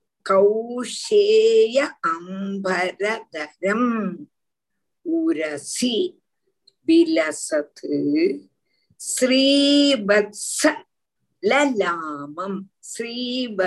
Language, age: Tamil, 50-69